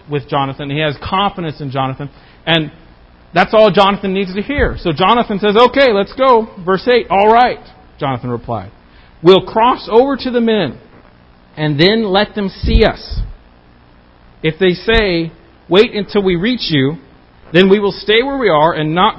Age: 50-69